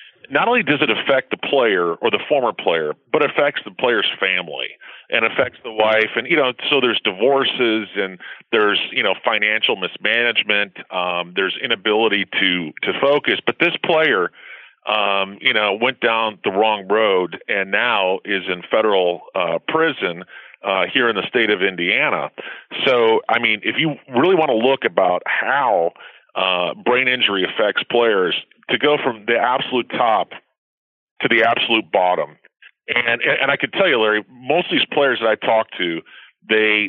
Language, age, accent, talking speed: English, 40-59, American, 170 wpm